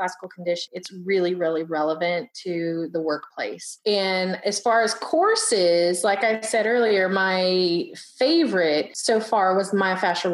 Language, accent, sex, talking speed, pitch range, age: English, American, female, 140 wpm, 175-215 Hz, 30-49